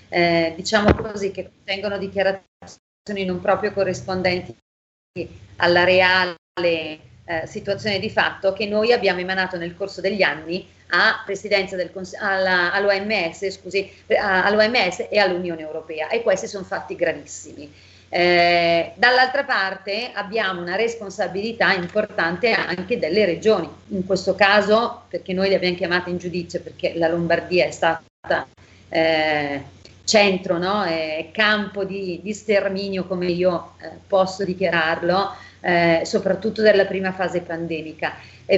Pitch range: 175-210 Hz